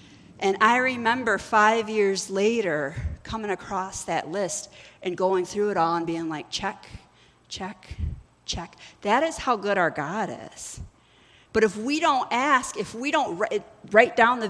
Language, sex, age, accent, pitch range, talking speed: English, female, 40-59, American, 190-250 Hz, 165 wpm